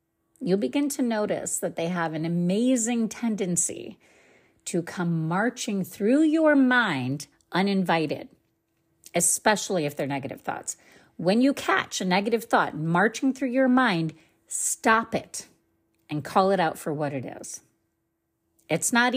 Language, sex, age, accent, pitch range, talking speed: English, female, 40-59, American, 160-225 Hz, 140 wpm